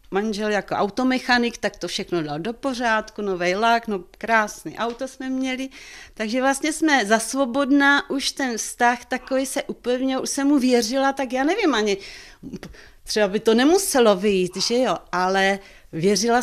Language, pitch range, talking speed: Czech, 195-265 Hz, 155 wpm